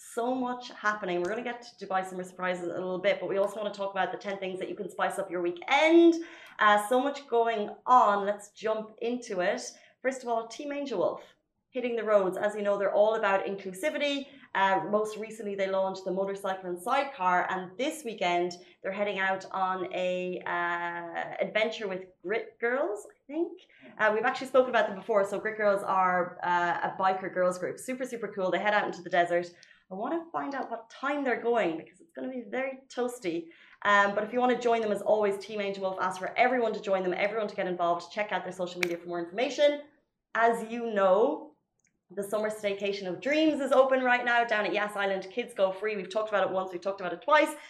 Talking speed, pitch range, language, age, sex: 230 wpm, 185-235 Hz, Arabic, 30-49, female